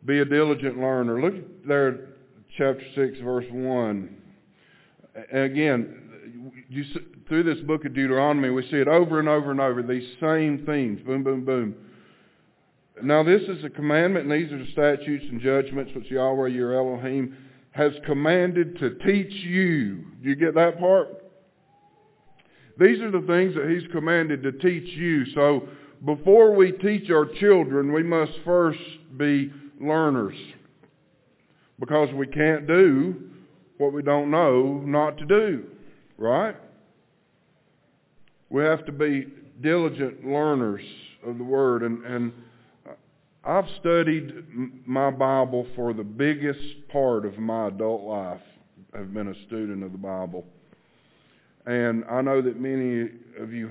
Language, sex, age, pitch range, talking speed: English, male, 50-69, 125-155 Hz, 145 wpm